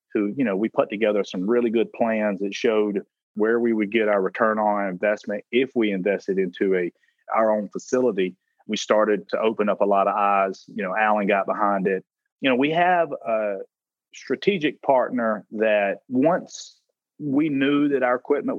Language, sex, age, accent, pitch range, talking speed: English, male, 30-49, American, 105-140 Hz, 185 wpm